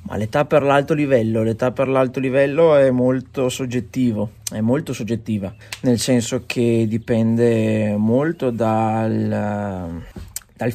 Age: 20-39